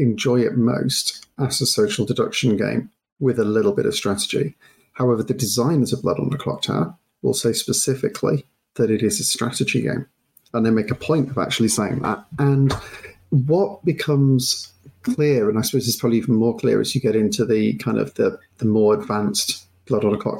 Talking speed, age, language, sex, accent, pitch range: 200 wpm, 40-59, English, male, British, 110-135 Hz